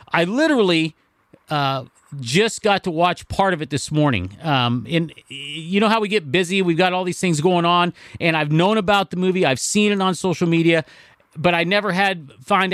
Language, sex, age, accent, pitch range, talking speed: English, male, 40-59, American, 150-185 Hz, 205 wpm